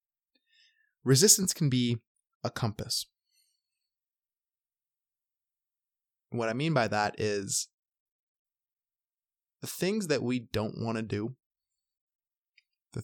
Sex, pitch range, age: male, 110-145 Hz, 20-39